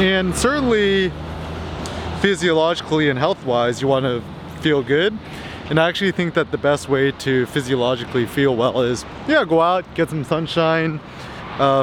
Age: 20-39